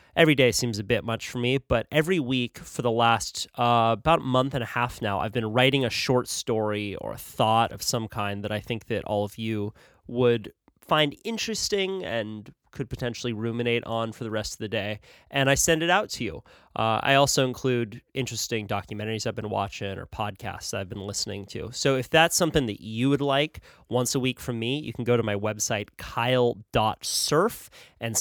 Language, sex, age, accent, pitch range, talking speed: English, male, 30-49, American, 105-125 Hz, 205 wpm